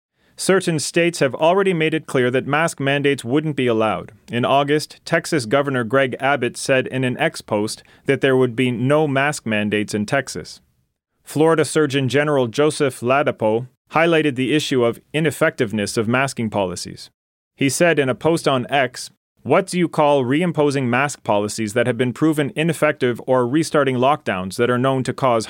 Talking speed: 170 wpm